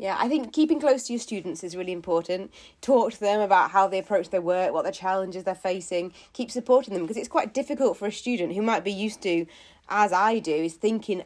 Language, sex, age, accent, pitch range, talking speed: English, female, 30-49, British, 175-225 Hz, 240 wpm